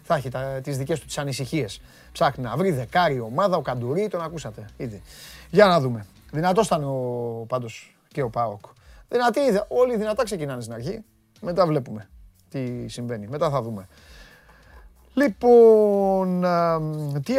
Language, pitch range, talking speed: Greek, 125-180 Hz, 150 wpm